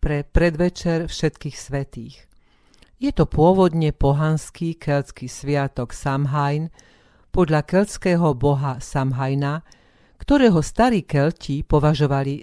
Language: Slovak